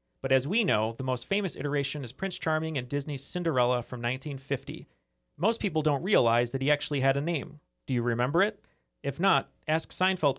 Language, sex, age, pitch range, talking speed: English, male, 30-49, 125-155 Hz, 195 wpm